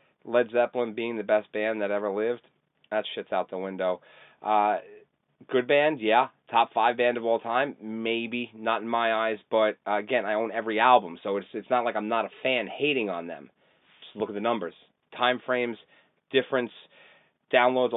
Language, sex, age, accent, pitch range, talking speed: English, male, 30-49, American, 105-120 Hz, 190 wpm